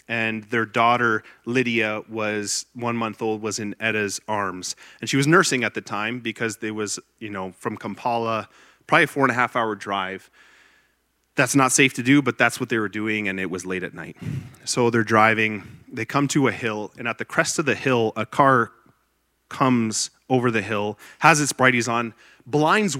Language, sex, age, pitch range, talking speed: English, male, 30-49, 105-130 Hz, 200 wpm